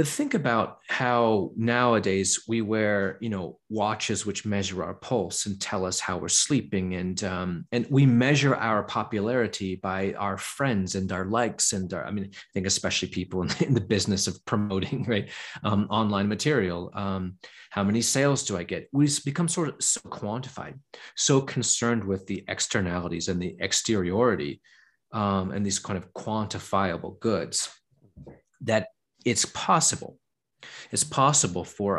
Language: English